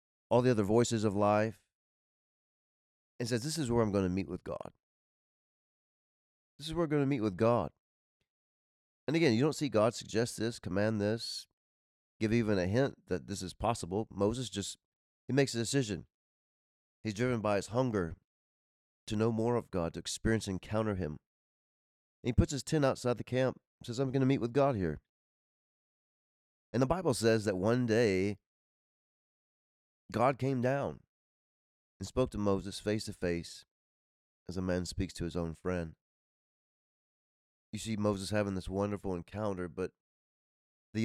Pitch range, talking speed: 90-120 Hz, 170 wpm